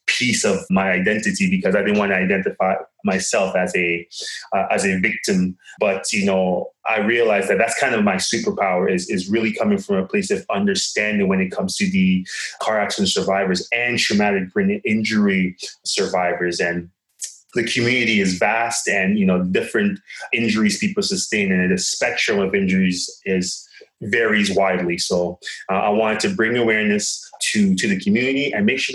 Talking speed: 175 wpm